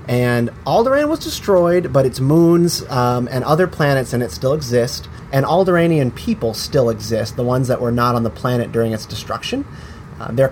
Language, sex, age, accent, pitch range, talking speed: English, male, 30-49, American, 115-140 Hz, 190 wpm